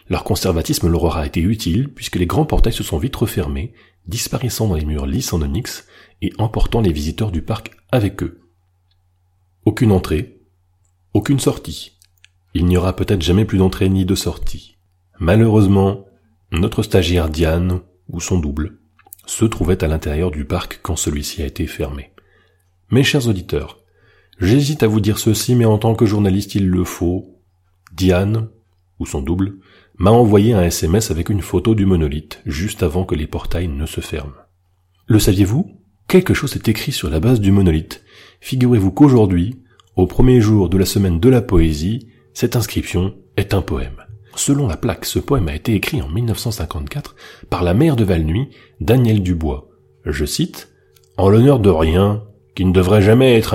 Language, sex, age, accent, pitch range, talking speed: French, male, 30-49, French, 85-110 Hz, 170 wpm